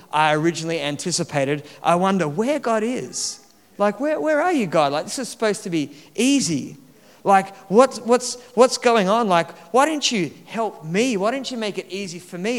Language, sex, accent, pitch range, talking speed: English, male, Australian, 155-210 Hz, 205 wpm